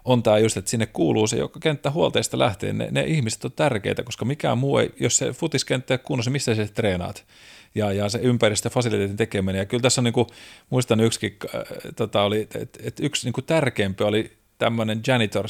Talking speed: 200 wpm